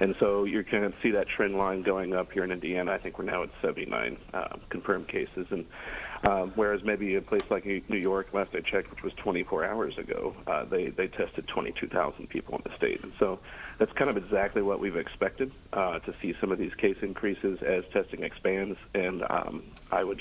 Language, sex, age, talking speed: English, male, 40-59, 215 wpm